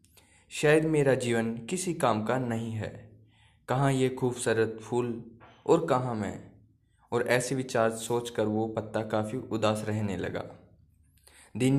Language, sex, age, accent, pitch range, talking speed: Hindi, male, 20-39, native, 105-130 Hz, 135 wpm